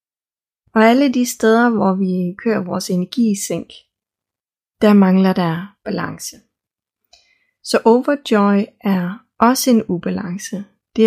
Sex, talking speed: female, 120 wpm